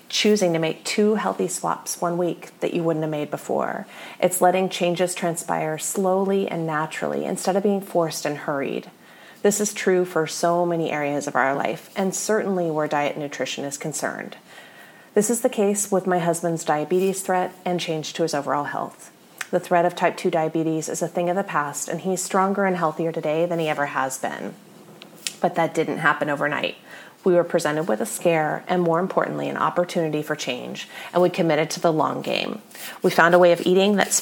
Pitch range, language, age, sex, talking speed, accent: 155-195 Hz, English, 30-49, female, 200 wpm, American